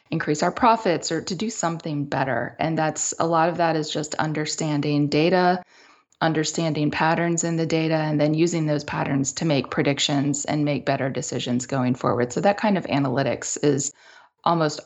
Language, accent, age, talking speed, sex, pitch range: English, American, 20-39, 180 wpm, female, 145-165 Hz